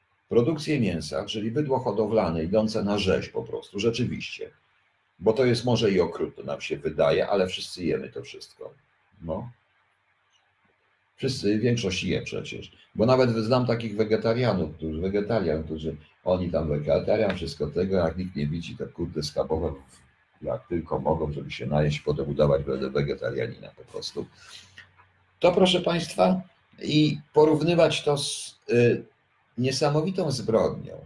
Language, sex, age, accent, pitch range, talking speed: Polish, male, 50-69, native, 95-155 Hz, 140 wpm